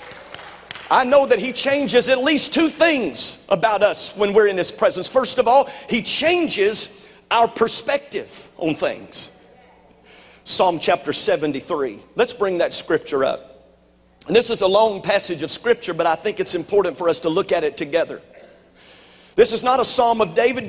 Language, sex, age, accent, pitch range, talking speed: English, male, 50-69, American, 160-255 Hz, 175 wpm